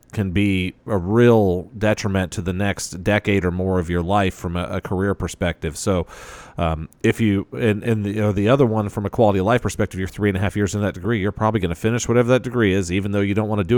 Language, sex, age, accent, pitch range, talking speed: English, male, 40-59, American, 90-105 Hz, 270 wpm